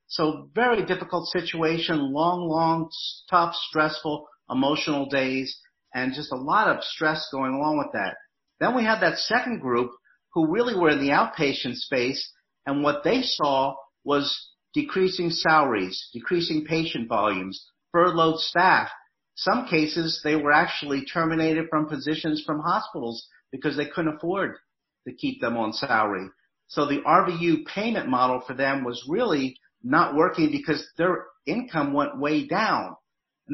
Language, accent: English, American